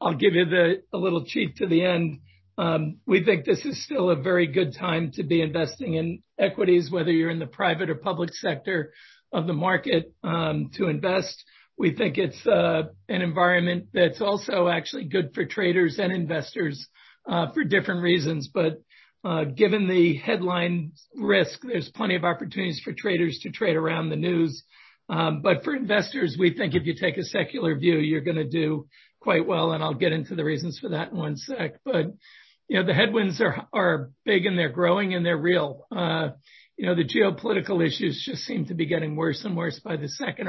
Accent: American